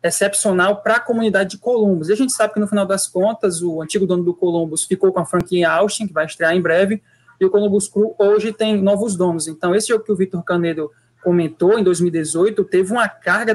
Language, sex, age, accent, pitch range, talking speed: Portuguese, male, 20-39, Brazilian, 165-205 Hz, 230 wpm